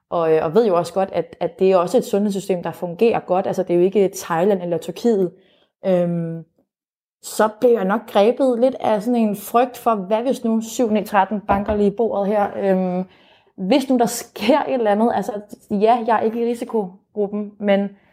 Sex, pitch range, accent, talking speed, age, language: female, 180-220 Hz, native, 190 wpm, 20-39, Danish